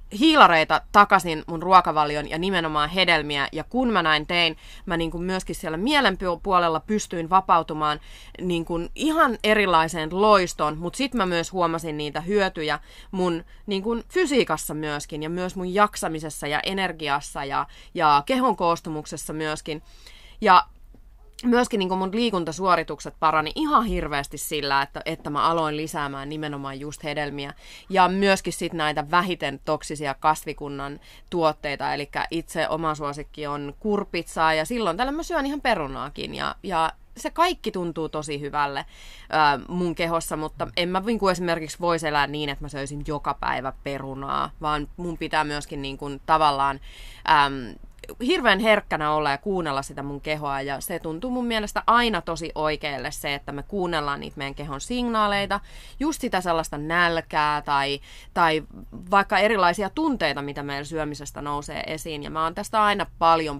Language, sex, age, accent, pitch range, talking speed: Finnish, female, 20-39, native, 145-185 Hz, 155 wpm